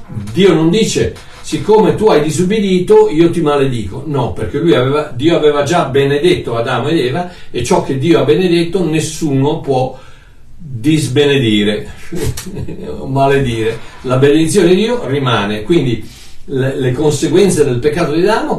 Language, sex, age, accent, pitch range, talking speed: Italian, male, 60-79, native, 130-180 Hz, 145 wpm